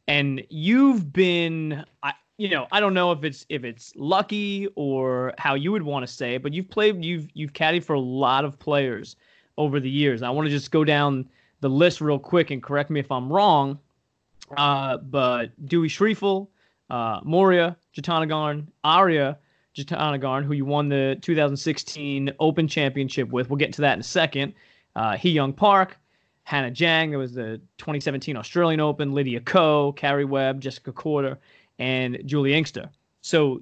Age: 20-39